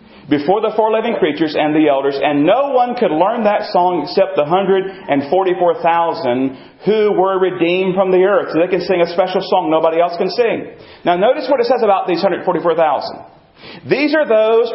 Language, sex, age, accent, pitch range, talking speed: English, male, 40-59, American, 170-240 Hz, 185 wpm